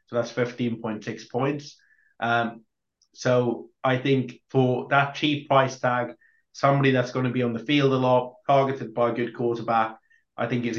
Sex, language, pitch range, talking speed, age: male, English, 115-125 Hz, 185 wpm, 20-39